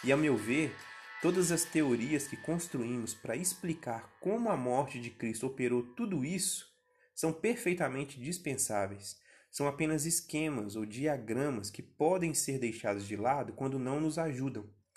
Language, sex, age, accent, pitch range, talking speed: Portuguese, male, 20-39, Brazilian, 115-165 Hz, 150 wpm